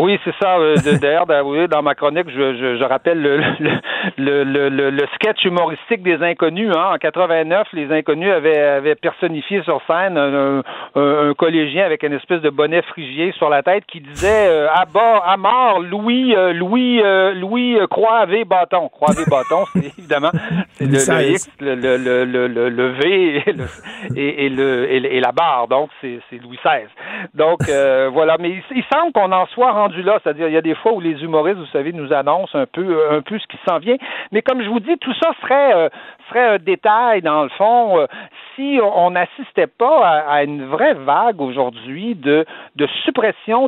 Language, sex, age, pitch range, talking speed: French, male, 50-69, 145-205 Hz, 205 wpm